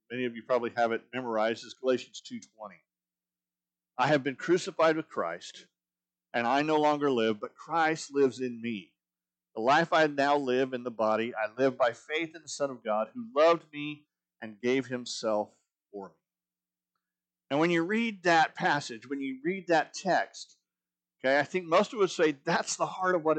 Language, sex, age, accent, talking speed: English, male, 50-69, American, 190 wpm